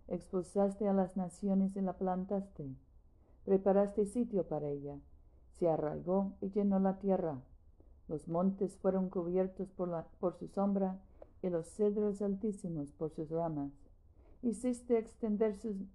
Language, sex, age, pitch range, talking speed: Spanish, female, 50-69, 145-195 Hz, 130 wpm